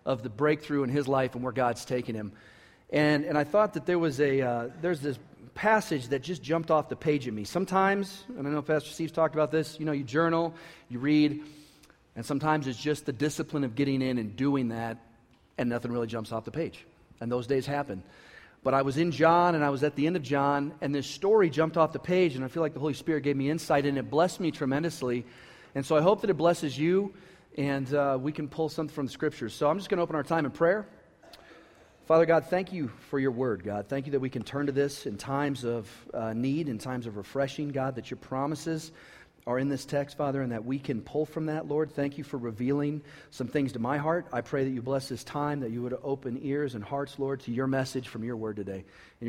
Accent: American